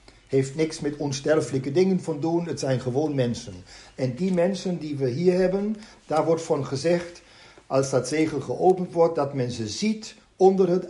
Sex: male